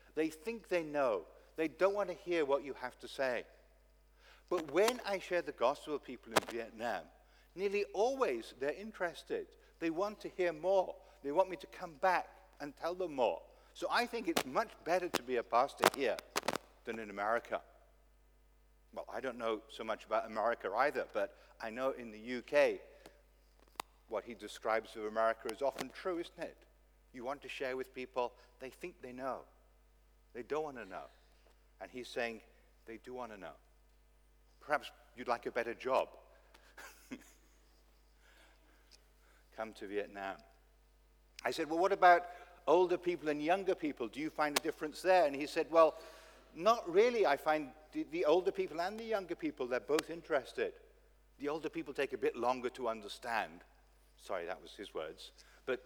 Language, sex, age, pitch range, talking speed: English, male, 50-69, 125-210 Hz, 175 wpm